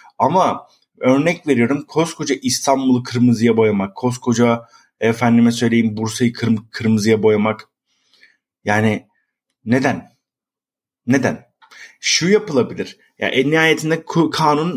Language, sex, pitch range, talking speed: Turkish, male, 105-135 Hz, 100 wpm